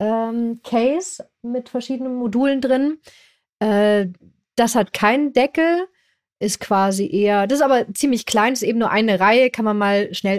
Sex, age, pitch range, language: female, 30-49, 190-235 Hz, German